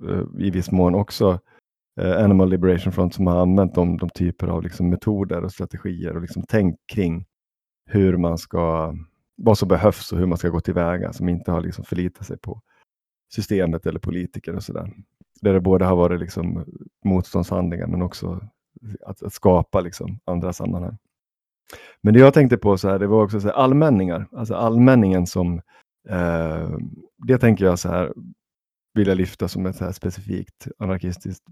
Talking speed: 175 wpm